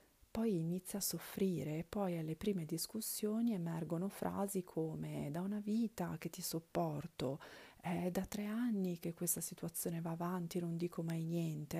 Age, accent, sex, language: 40-59, native, female, Italian